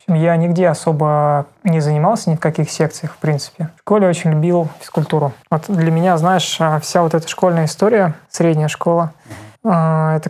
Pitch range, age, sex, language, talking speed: 160-180 Hz, 20-39, male, Russian, 165 wpm